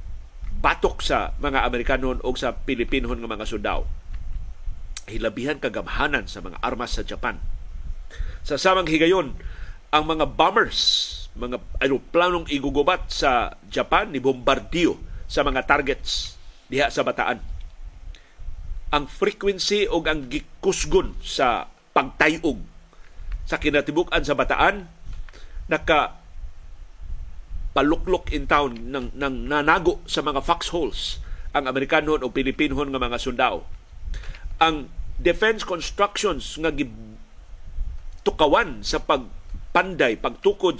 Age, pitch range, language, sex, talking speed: 50-69, 110-165 Hz, Filipino, male, 105 wpm